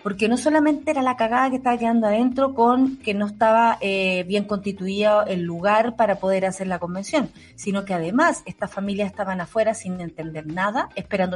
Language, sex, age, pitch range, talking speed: Spanish, female, 40-59, 190-240 Hz, 185 wpm